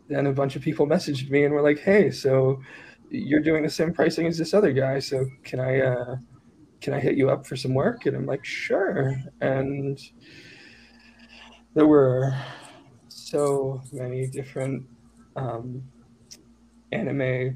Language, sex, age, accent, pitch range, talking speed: English, male, 20-39, American, 130-150 Hz, 155 wpm